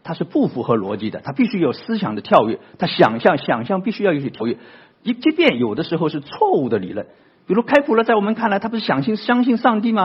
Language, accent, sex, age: Chinese, native, male, 50-69